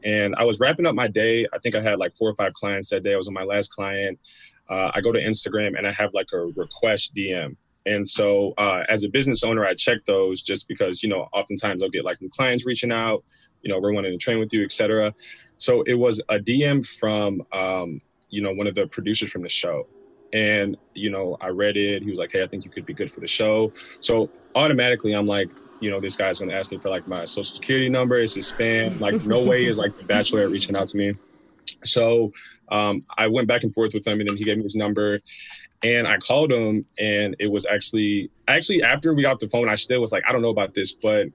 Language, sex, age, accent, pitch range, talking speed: English, male, 20-39, American, 100-120 Hz, 255 wpm